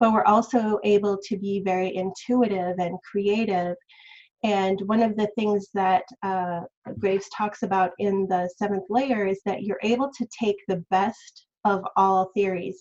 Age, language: 30-49, English